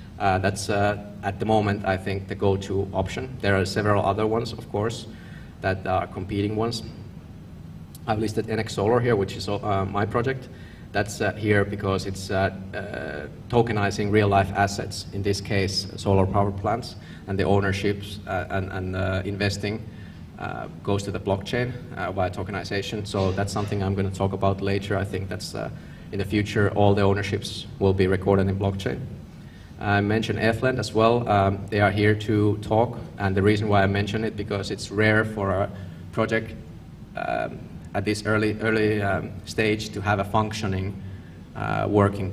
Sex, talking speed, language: male, 180 wpm, Finnish